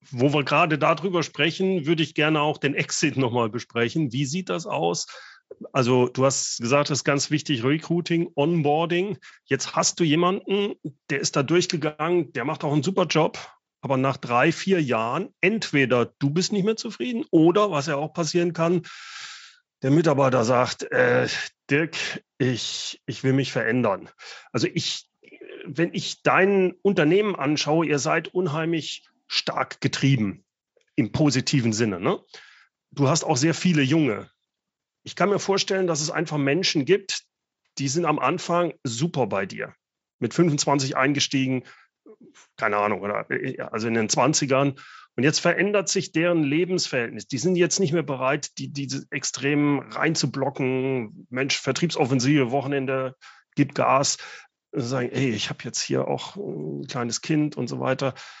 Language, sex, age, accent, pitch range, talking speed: German, male, 40-59, German, 135-170 Hz, 155 wpm